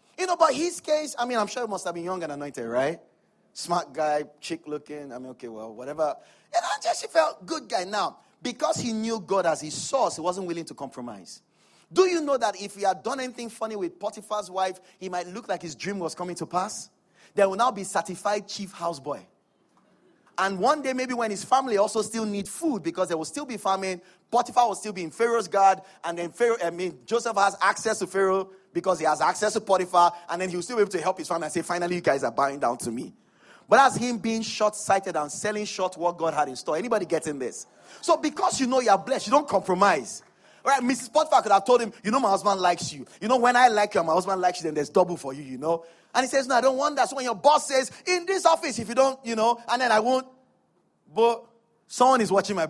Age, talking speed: 30-49, 250 wpm